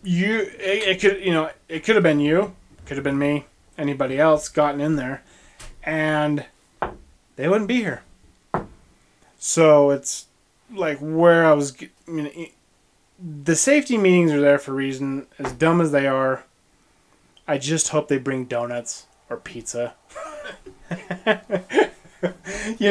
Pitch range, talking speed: 140-175 Hz, 140 wpm